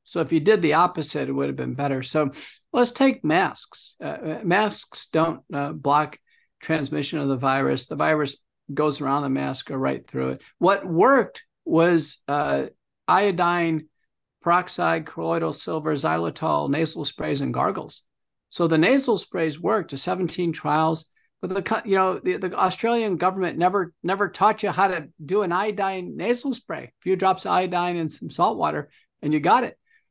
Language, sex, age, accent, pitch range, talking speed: English, male, 50-69, American, 150-200 Hz, 175 wpm